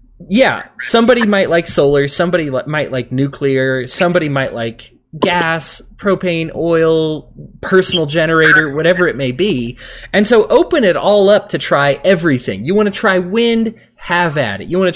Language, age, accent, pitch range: English, 20-39, American, 130-185 Hz